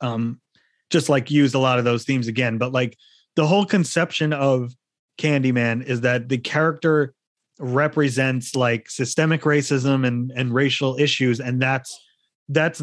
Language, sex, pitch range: English, male, 125-160 Hz